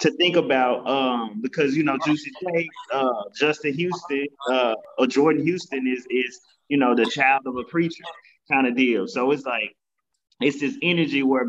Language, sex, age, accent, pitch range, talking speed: English, male, 30-49, American, 130-175 Hz, 185 wpm